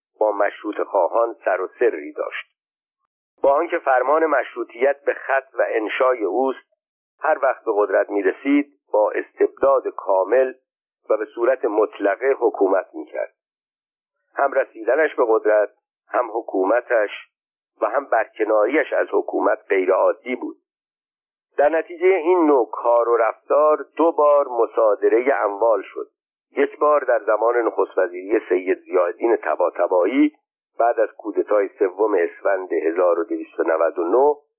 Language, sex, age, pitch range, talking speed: Persian, male, 50-69, 285-450 Hz, 130 wpm